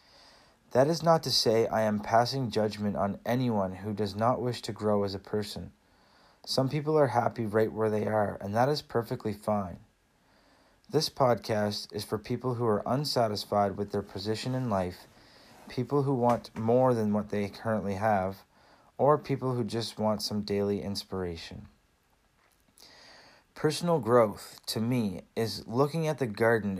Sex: male